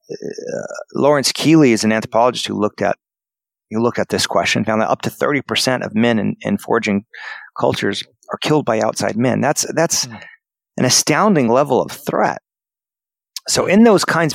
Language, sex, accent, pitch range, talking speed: English, male, American, 110-140 Hz, 175 wpm